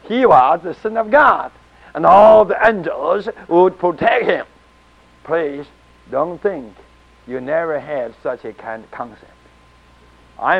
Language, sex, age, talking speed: English, male, 60-79, 140 wpm